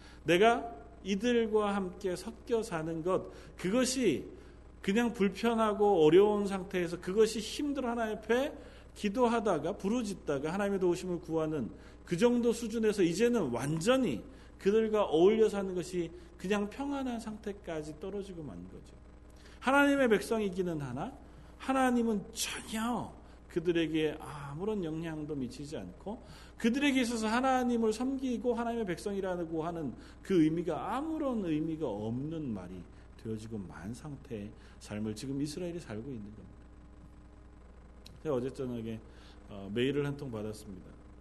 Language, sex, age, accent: Korean, male, 40-59, native